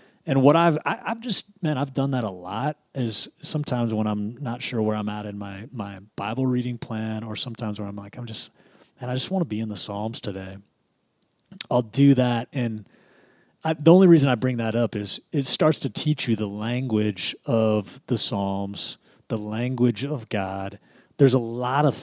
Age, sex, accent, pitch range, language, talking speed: 30-49, male, American, 105-135 Hz, English, 195 wpm